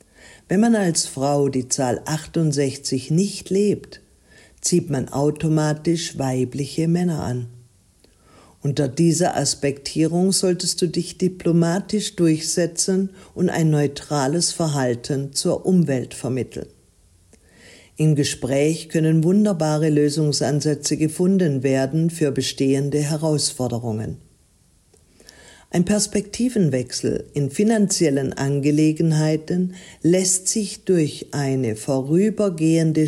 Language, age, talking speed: German, 50-69, 90 wpm